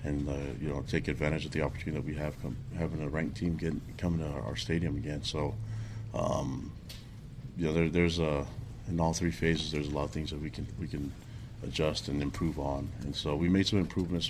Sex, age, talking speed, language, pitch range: male, 30-49, 230 wpm, English, 75-95 Hz